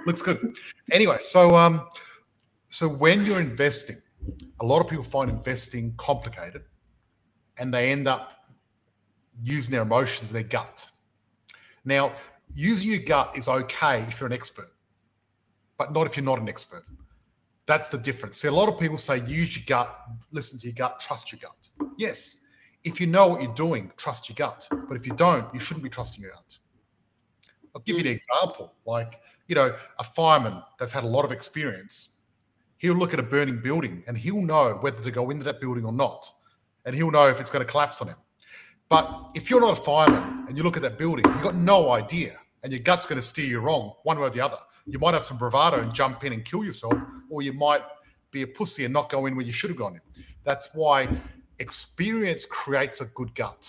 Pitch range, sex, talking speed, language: 120-160 Hz, male, 210 wpm, English